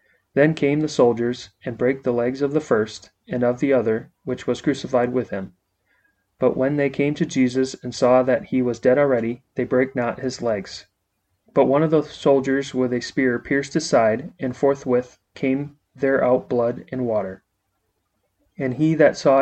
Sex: male